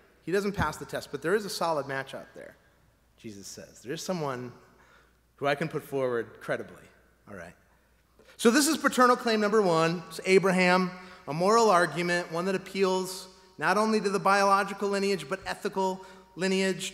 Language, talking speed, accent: English, 175 wpm, American